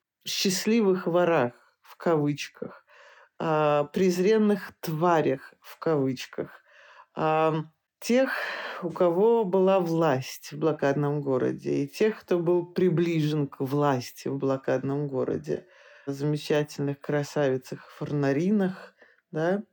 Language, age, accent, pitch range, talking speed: Russian, 40-59, native, 145-180 Hz, 90 wpm